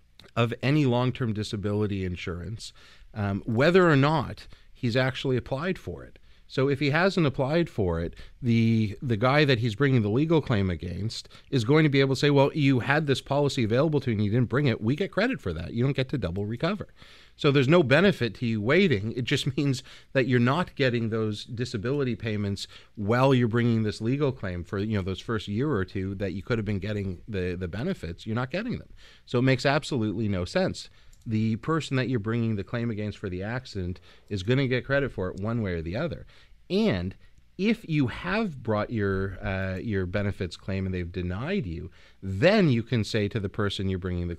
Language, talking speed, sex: English, 215 wpm, male